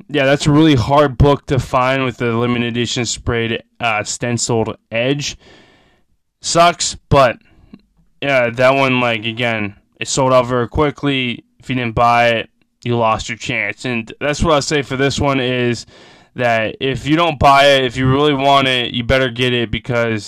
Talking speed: 185 wpm